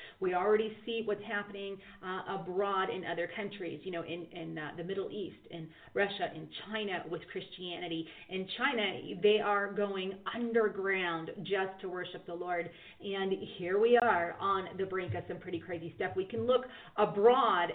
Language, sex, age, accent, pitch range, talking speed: English, female, 30-49, American, 175-215 Hz, 170 wpm